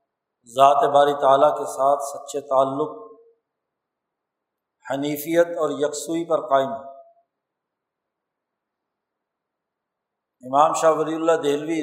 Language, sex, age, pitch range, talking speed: Urdu, male, 50-69, 145-180 Hz, 90 wpm